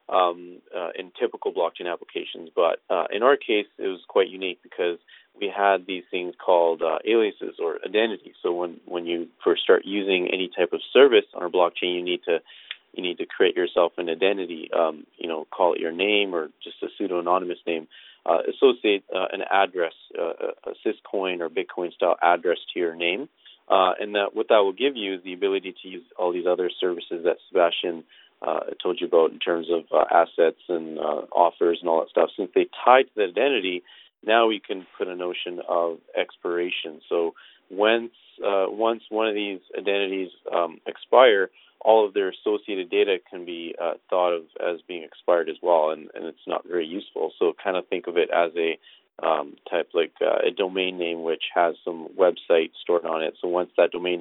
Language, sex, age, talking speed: English, male, 30-49, 205 wpm